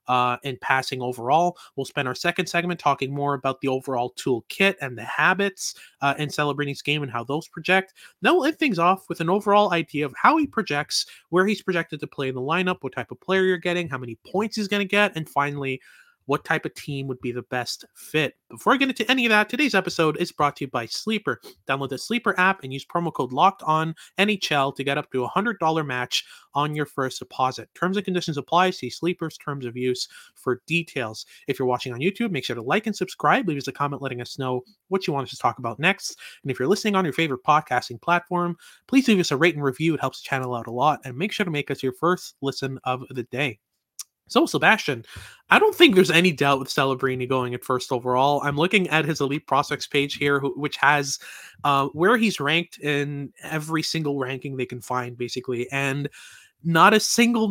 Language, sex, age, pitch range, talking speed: English, male, 30-49, 130-185 Hz, 230 wpm